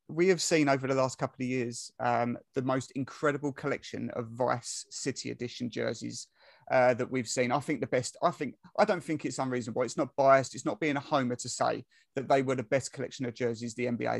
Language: English